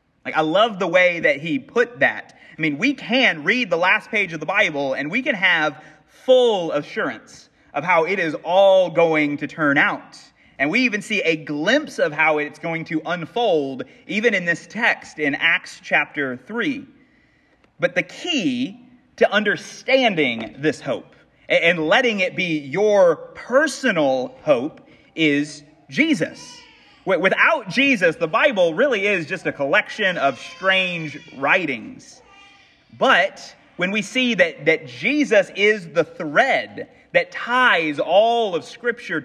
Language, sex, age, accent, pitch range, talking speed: English, male, 30-49, American, 160-260 Hz, 150 wpm